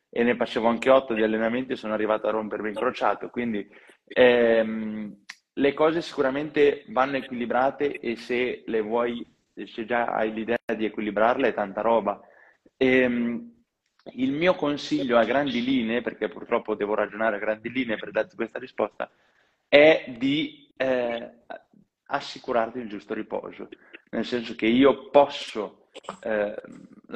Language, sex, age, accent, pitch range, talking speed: Italian, male, 20-39, native, 110-140 Hz, 145 wpm